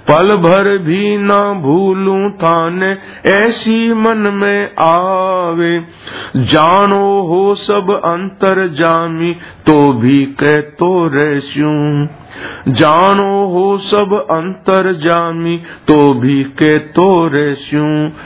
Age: 50-69